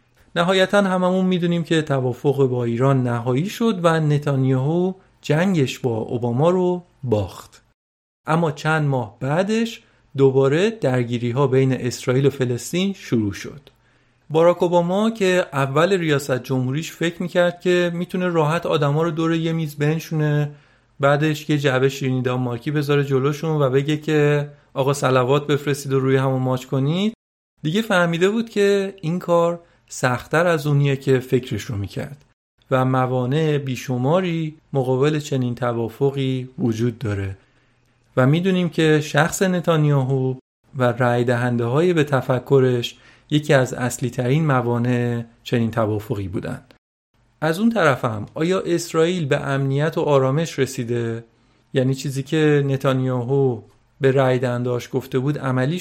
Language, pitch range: Persian, 125-160 Hz